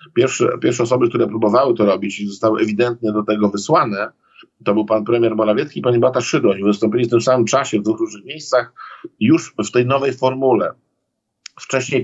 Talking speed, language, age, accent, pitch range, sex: 185 wpm, Polish, 50-69, native, 105-120 Hz, male